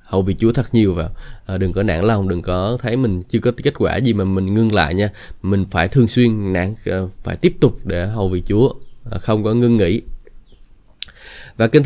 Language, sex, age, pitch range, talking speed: Vietnamese, male, 20-39, 100-130 Hz, 215 wpm